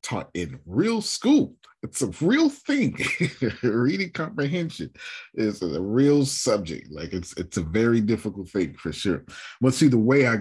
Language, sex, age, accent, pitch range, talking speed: English, male, 40-59, American, 85-115 Hz, 160 wpm